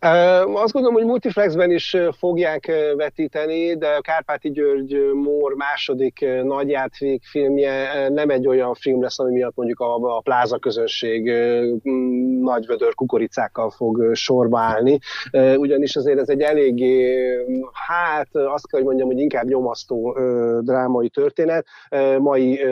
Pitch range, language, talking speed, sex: 120-150 Hz, Hungarian, 125 wpm, male